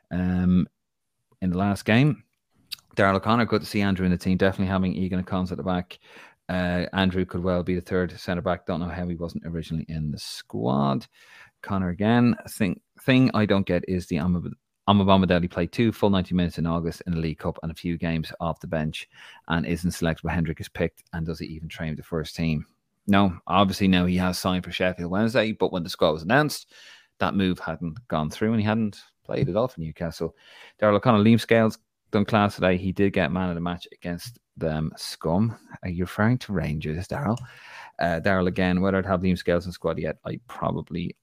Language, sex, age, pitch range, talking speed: English, male, 30-49, 85-105 Hz, 215 wpm